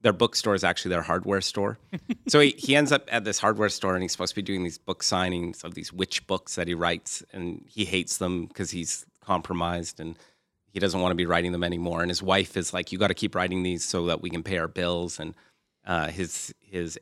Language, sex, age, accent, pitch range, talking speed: English, male, 30-49, American, 85-105 Hz, 245 wpm